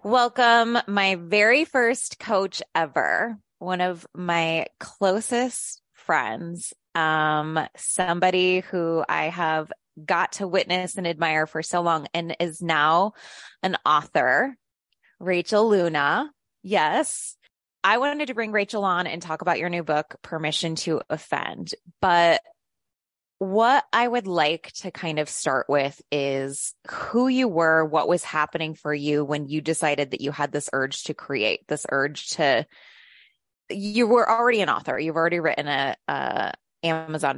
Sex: female